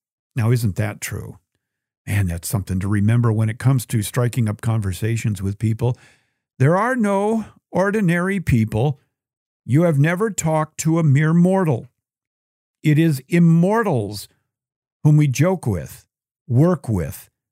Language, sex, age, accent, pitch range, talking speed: English, male, 50-69, American, 115-155 Hz, 135 wpm